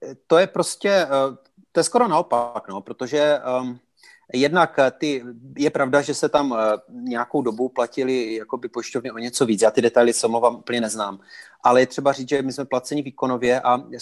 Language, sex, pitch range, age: Czech, male, 125-140 Hz, 30-49